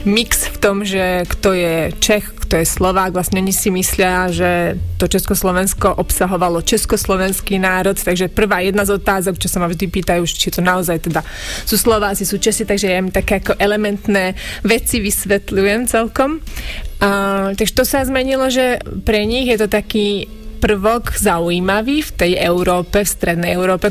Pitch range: 180-205 Hz